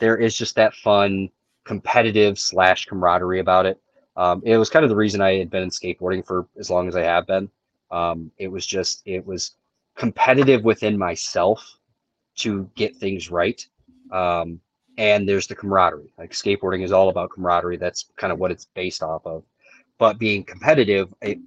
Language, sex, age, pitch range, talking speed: English, male, 20-39, 90-110 Hz, 180 wpm